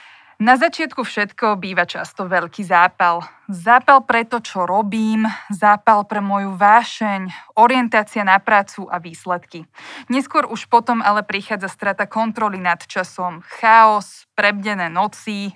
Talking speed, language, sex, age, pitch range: 125 wpm, Slovak, female, 20-39, 190-235 Hz